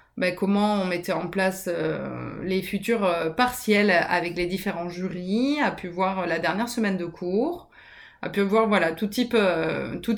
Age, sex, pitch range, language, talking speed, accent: 20-39, female, 180-210 Hz, French, 190 wpm, French